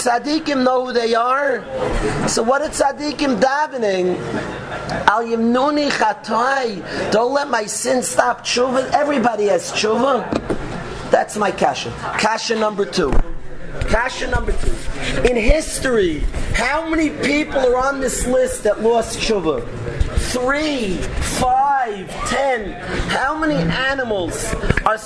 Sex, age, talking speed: male, 40-59, 115 wpm